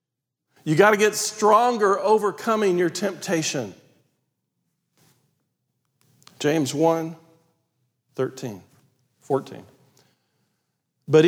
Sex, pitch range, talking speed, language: male, 135-190 Hz, 70 wpm, English